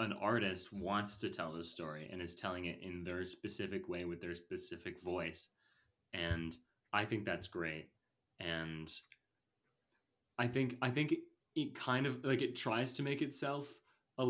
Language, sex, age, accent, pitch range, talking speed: English, male, 20-39, American, 95-125 Hz, 165 wpm